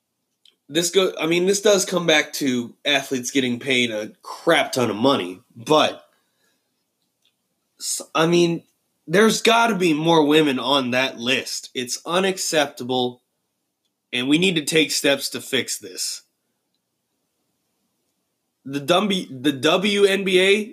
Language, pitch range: English, 120-160 Hz